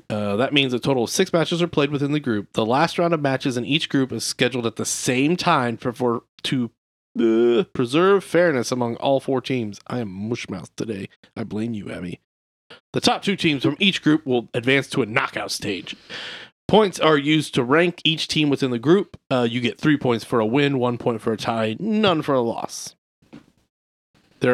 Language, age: English, 30-49